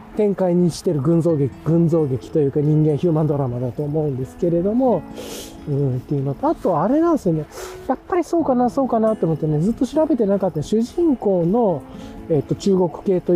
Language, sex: Japanese, male